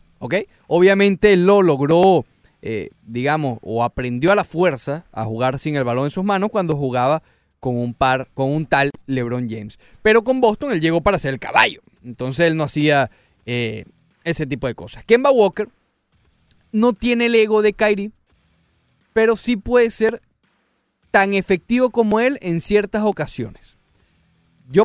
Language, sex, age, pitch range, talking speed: Spanish, male, 30-49, 135-205 Hz, 160 wpm